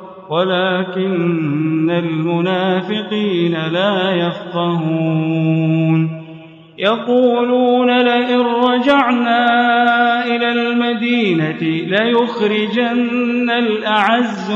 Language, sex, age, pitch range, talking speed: Arabic, male, 40-59, 180-235 Hz, 45 wpm